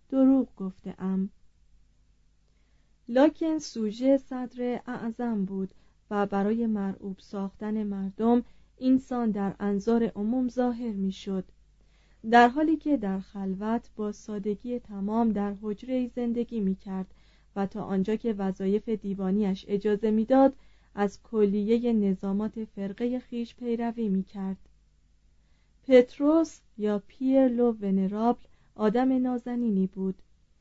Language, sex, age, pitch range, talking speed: Persian, female, 30-49, 200-245 Hz, 110 wpm